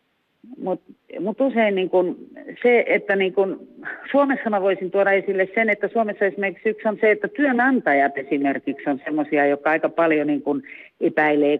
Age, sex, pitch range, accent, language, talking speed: 50-69, female, 150-200 Hz, native, Finnish, 150 wpm